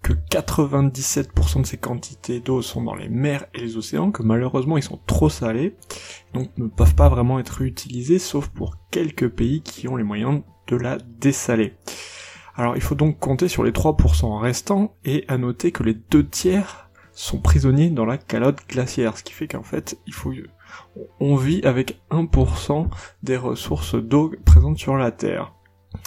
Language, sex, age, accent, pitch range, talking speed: French, male, 20-39, French, 90-140 Hz, 175 wpm